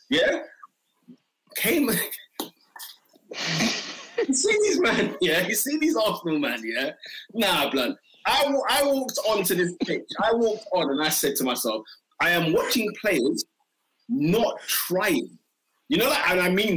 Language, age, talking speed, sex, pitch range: English, 30-49, 155 wpm, male, 165-270 Hz